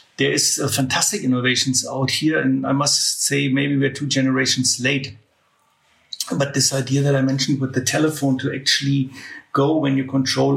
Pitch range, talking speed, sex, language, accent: 130-140 Hz, 175 wpm, male, English, German